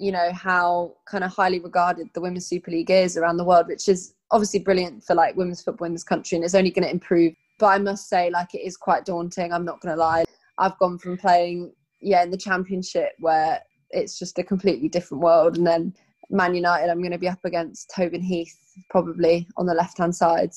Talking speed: 230 wpm